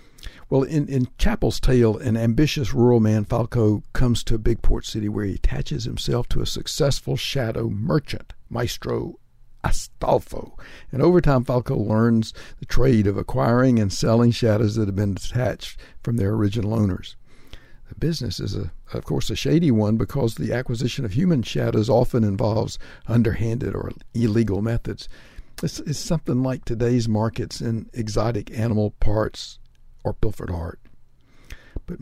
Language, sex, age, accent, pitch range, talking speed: English, male, 60-79, American, 105-125 Hz, 150 wpm